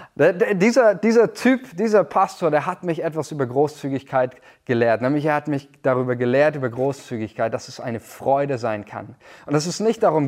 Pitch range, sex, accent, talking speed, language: 135-180 Hz, male, German, 180 wpm, German